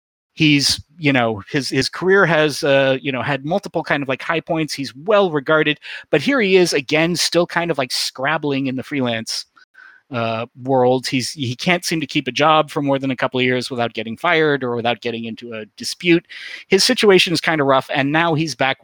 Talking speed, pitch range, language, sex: 215 wpm, 120-155 Hz, English, male